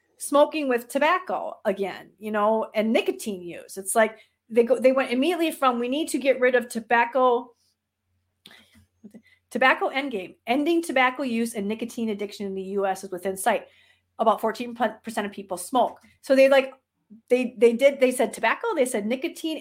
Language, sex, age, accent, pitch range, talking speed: English, female, 30-49, American, 215-275 Hz, 170 wpm